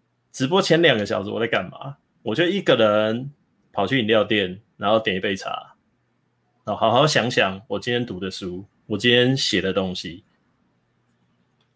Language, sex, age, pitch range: Chinese, male, 20-39, 110-155 Hz